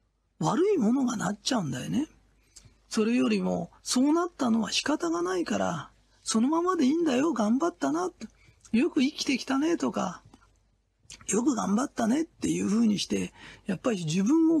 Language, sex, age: Japanese, male, 40-59